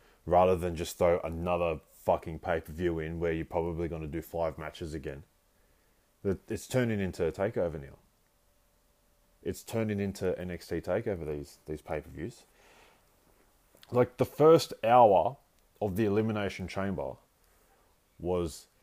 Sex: male